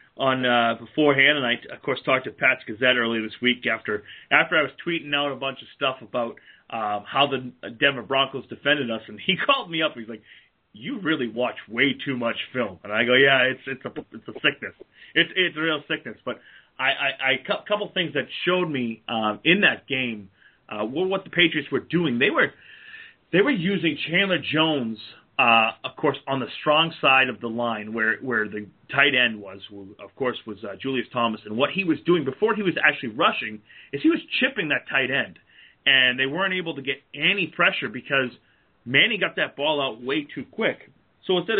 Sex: male